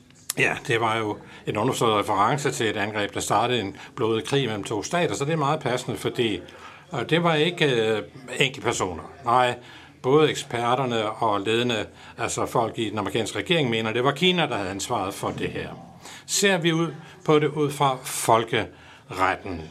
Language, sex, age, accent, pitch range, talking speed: Danish, male, 60-79, native, 110-150 Hz, 175 wpm